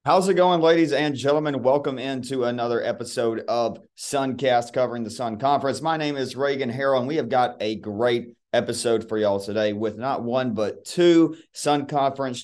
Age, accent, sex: 30-49, American, male